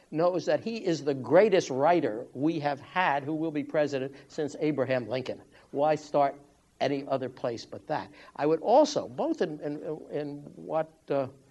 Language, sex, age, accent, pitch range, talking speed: English, male, 60-79, American, 135-165 Hz, 170 wpm